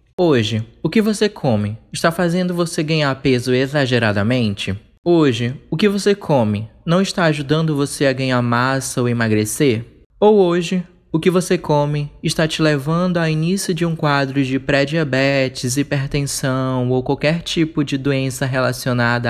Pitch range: 130-175 Hz